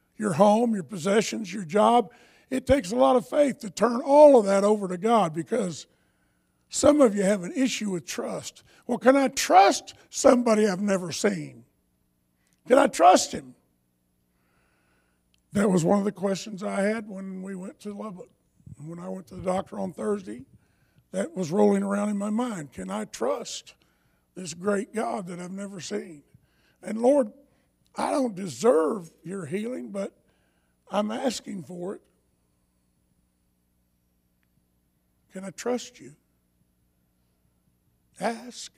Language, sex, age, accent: English, male, 50-69, American